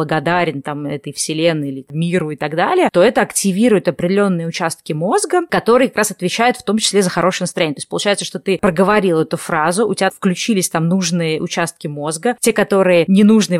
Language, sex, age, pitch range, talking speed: Russian, female, 20-39, 165-205 Hz, 190 wpm